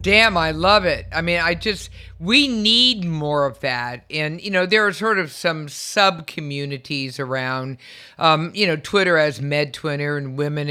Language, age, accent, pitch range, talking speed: English, 50-69, American, 145-175 Hz, 170 wpm